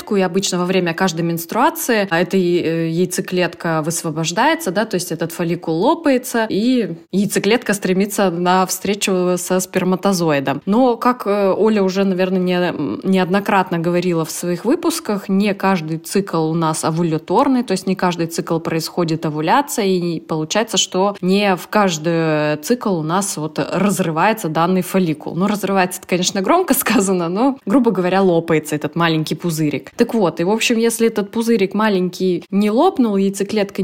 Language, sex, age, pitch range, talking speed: Russian, female, 20-39, 165-200 Hz, 145 wpm